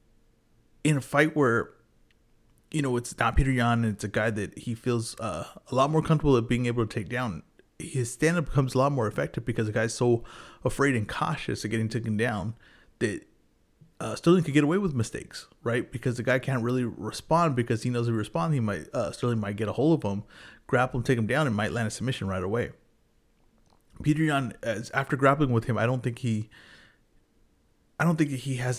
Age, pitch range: 30-49, 110-135 Hz